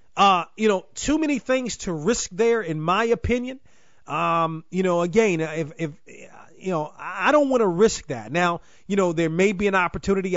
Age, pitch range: 30-49, 160-210 Hz